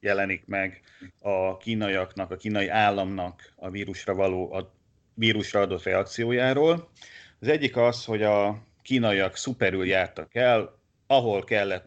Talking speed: 125 wpm